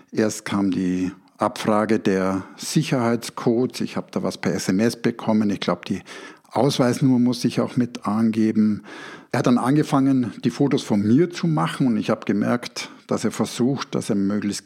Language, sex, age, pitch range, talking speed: German, male, 60-79, 110-140 Hz, 170 wpm